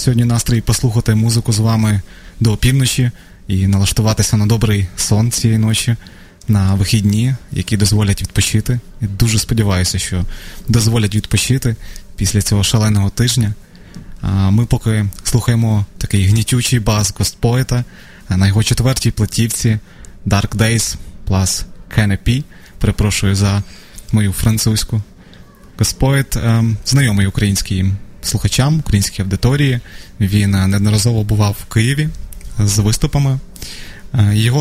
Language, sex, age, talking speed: Ukrainian, male, 20-39, 115 wpm